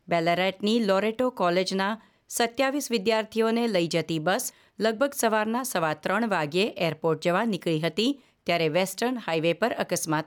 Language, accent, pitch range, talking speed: Gujarati, native, 170-230 Hz, 130 wpm